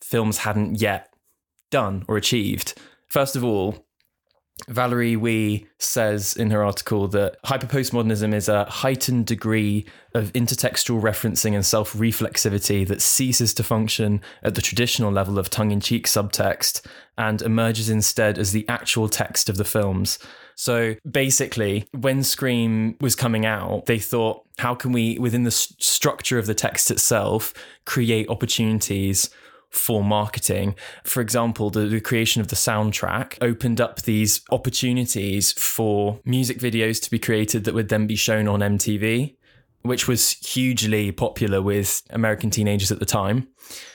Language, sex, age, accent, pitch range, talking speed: English, male, 20-39, British, 105-120 Hz, 145 wpm